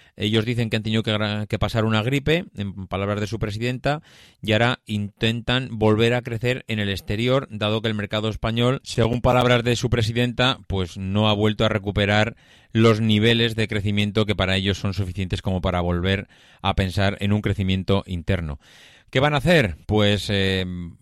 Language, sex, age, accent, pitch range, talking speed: Spanish, male, 30-49, Spanish, 100-115 Hz, 180 wpm